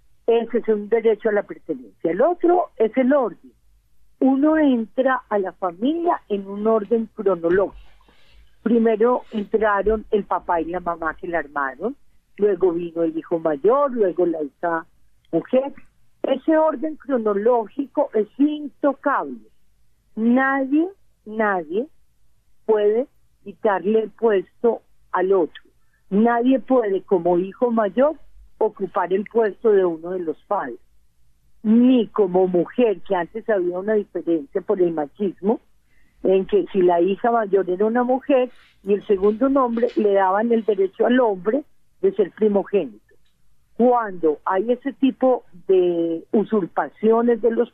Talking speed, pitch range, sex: 135 wpm, 190-245 Hz, female